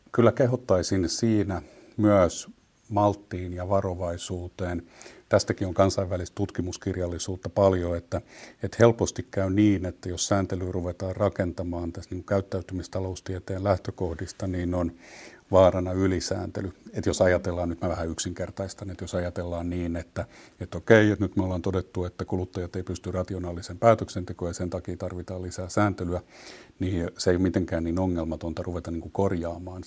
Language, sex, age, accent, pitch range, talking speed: Finnish, male, 50-69, native, 85-95 Hz, 135 wpm